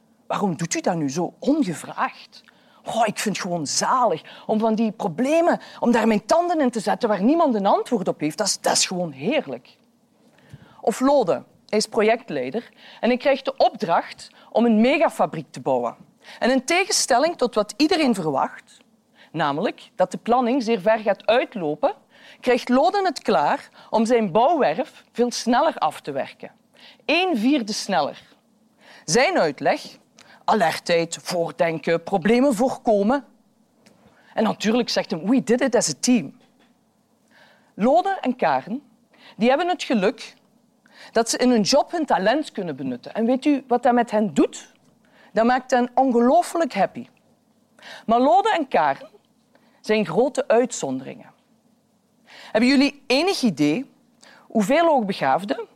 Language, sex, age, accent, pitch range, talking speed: Dutch, female, 40-59, Dutch, 210-270 Hz, 150 wpm